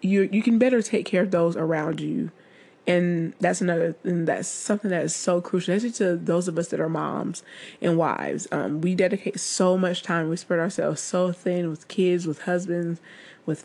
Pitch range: 165-200 Hz